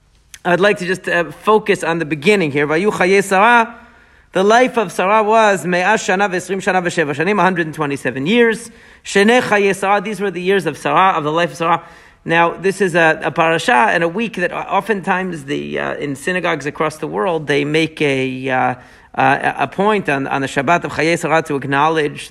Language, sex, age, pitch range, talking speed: English, male, 40-59, 150-195 Hz, 165 wpm